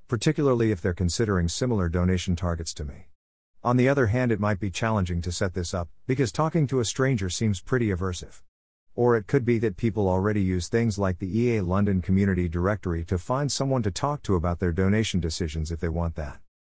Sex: male